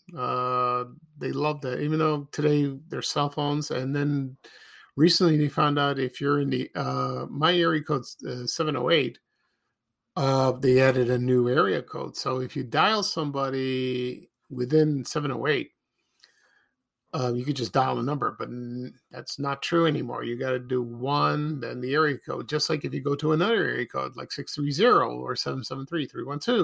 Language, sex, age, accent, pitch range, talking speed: English, male, 50-69, American, 130-155 Hz, 170 wpm